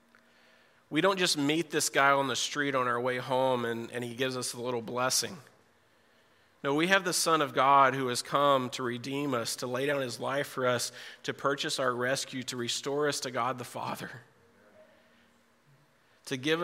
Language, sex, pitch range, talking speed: English, male, 125-150 Hz, 195 wpm